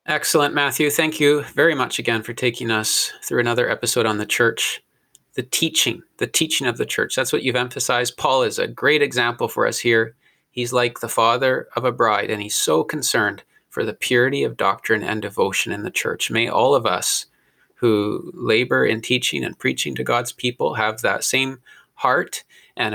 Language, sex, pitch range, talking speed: English, male, 110-135 Hz, 195 wpm